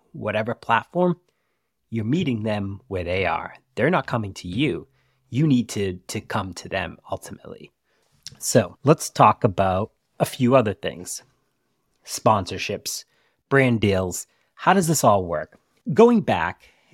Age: 30-49